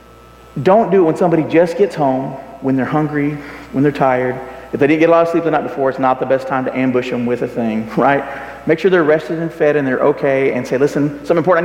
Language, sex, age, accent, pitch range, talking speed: English, male, 40-59, American, 130-170 Hz, 265 wpm